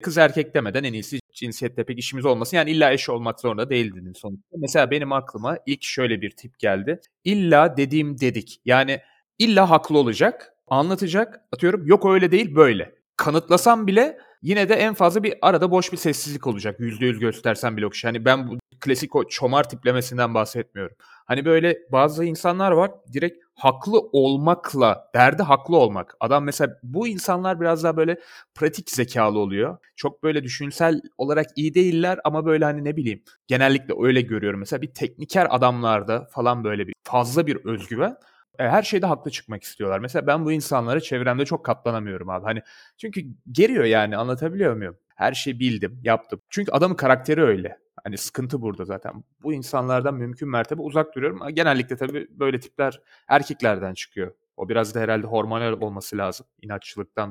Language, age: Turkish, 30-49